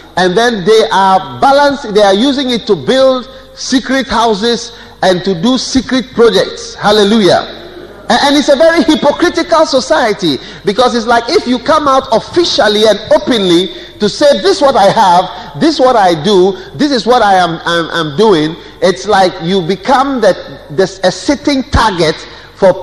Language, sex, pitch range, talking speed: English, male, 200-280 Hz, 170 wpm